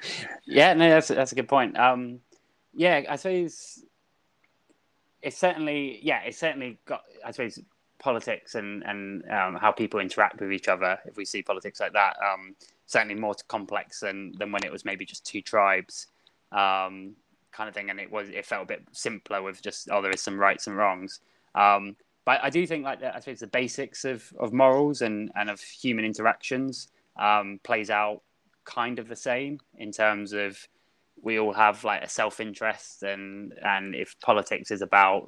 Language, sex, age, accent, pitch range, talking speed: English, male, 20-39, British, 100-120 Hz, 185 wpm